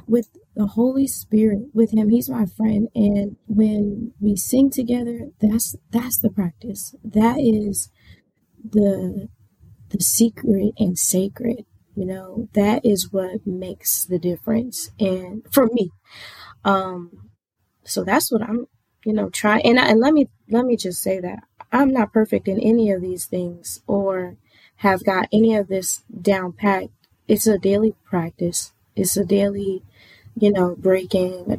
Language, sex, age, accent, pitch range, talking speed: English, female, 20-39, American, 180-220 Hz, 155 wpm